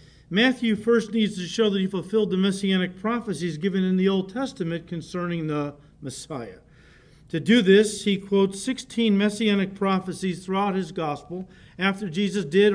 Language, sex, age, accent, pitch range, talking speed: English, male, 50-69, American, 170-215 Hz, 155 wpm